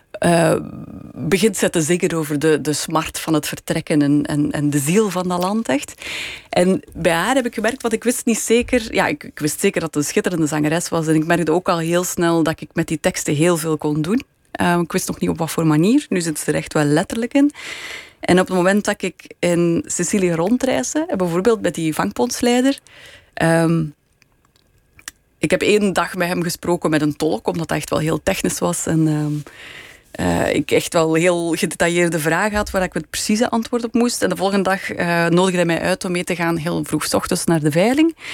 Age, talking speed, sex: 30-49, 225 wpm, female